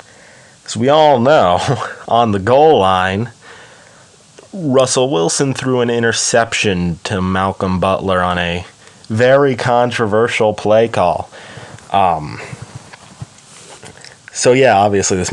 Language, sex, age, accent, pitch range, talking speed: English, male, 20-39, American, 95-125 Hz, 105 wpm